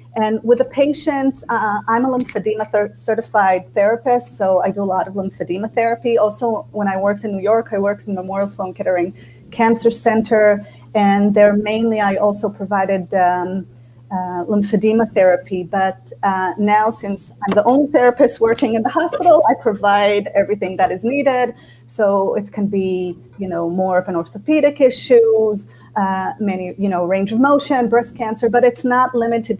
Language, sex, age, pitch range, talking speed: English, female, 30-49, 190-225 Hz, 170 wpm